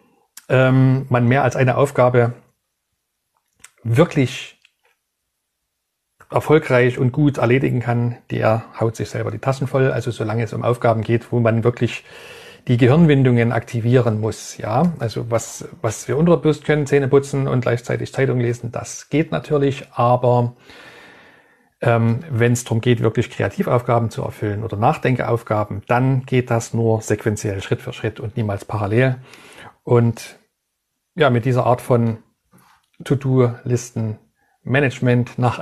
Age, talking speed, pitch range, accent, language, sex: 40-59, 135 wpm, 115-140 Hz, German, German, male